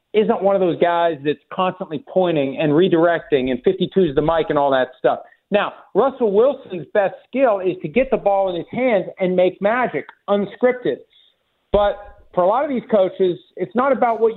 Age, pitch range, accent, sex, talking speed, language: 50-69, 160-200 Hz, American, male, 195 wpm, English